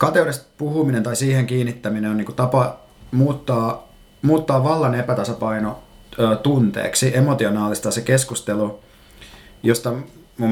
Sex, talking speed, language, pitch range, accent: male, 105 wpm, Finnish, 105-130 Hz, native